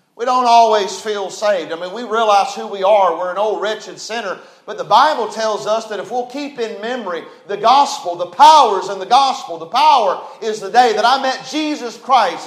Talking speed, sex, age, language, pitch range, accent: 215 wpm, male, 40-59, English, 180-225 Hz, American